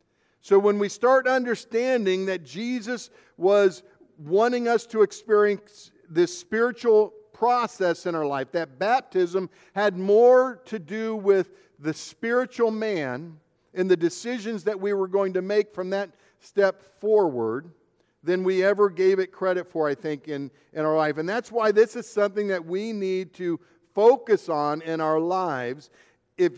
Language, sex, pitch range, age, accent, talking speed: English, male, 175-225 Hz, 50-69, American, 160 wpm